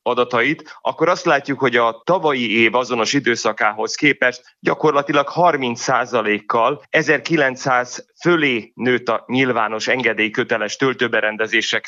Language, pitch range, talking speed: Hungarian, 120-145 Hz, 105 wpm